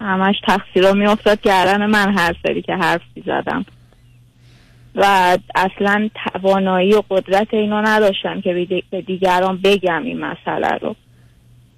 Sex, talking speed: female, 120 wpm